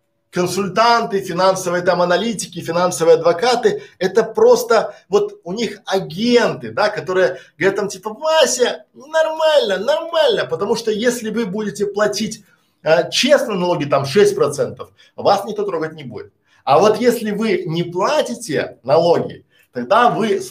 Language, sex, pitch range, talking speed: Russian, male, 175-240 Hz, 135 wpm